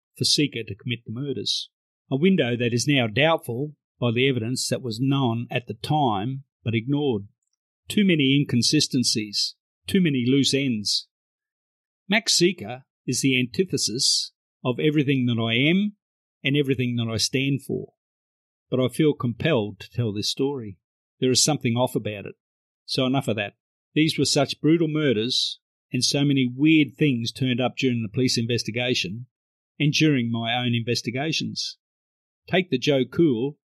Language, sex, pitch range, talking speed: English, male, 115-140 Hz, 160 wpm